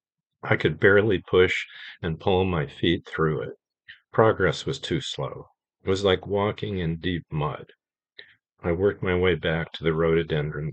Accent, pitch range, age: American, 80-105 Hz, 50-69